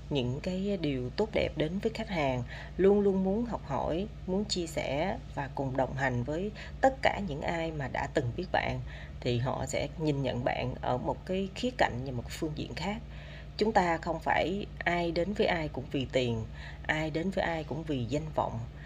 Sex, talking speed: female, 210 wpm